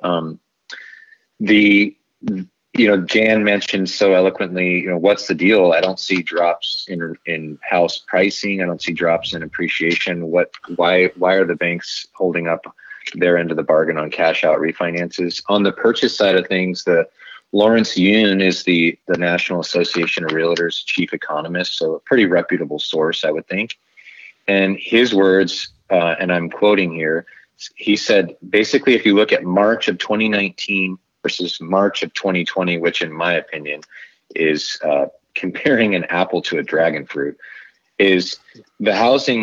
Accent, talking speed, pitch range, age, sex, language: American, 165 wpm, 85-100 Hz, 30-49, male, English